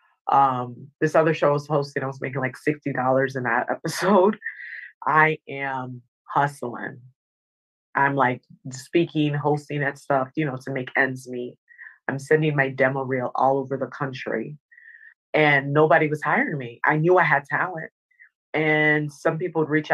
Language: English